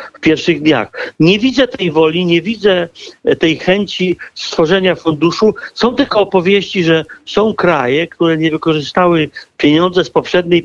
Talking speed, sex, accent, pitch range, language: 140 wpm, male, native, 165-205 Hz, Polish